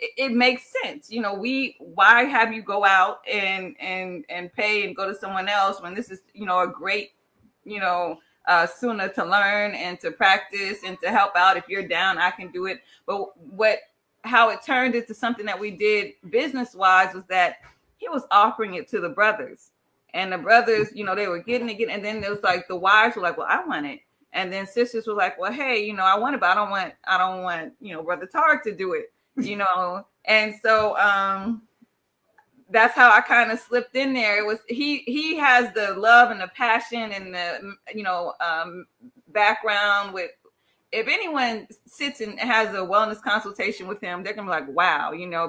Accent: American